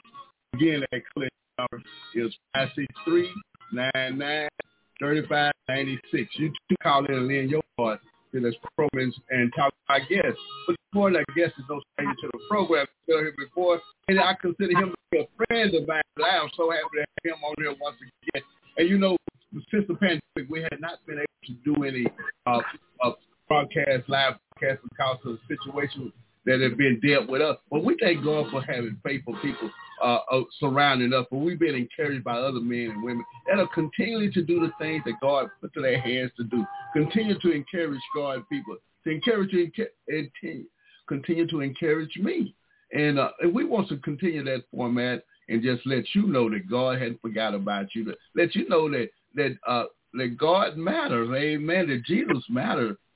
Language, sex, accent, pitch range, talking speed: English, male, American, 130-170 Hz, 190 wpm